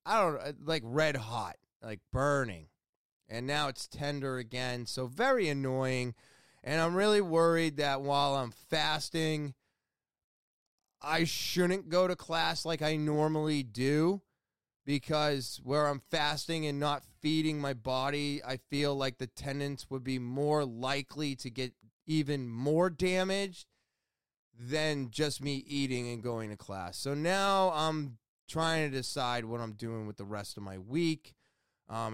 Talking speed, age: 150 wpm, 20-39